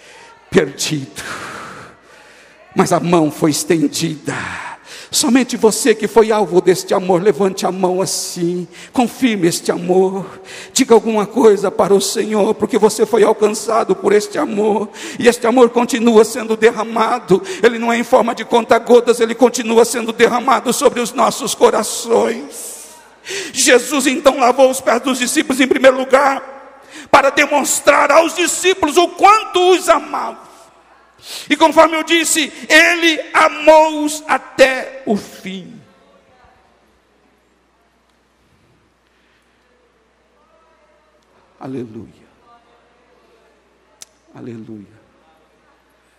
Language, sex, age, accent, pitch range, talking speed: Portuguese, male, 60-79, Brazilian, 190-300 Hz, 110 wpm